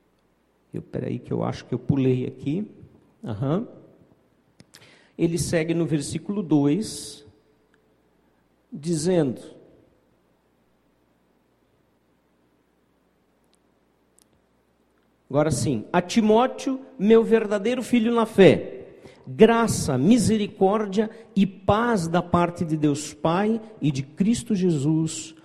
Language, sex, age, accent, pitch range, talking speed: Portuguese, male, 50-69, Brazilian, 140-195 Hz, 85 wpm